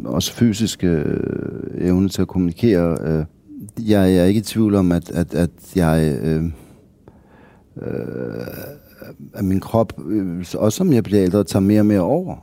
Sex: male